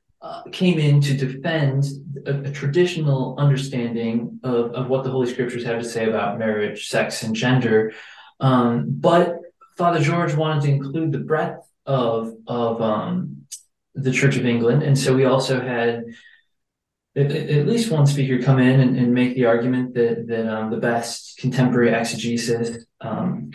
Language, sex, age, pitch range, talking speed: English, male, 20-39, 115-135 Hz, 160 wpm